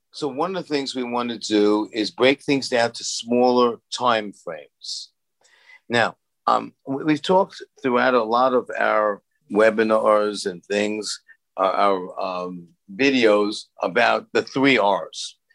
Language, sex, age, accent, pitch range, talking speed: English, male, 50-69, American, 105-140 Hz, 145 wpm